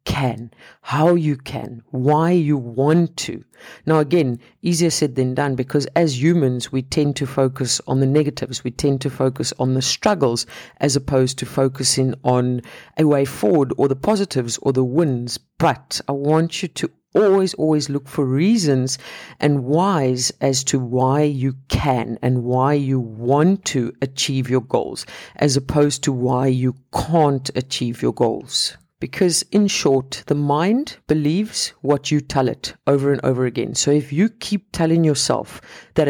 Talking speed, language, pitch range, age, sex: 165 wpm, English, 130-165 Hz, 50-69, female